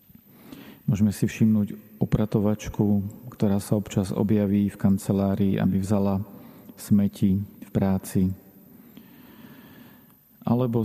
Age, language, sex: 40-59, Slovak, male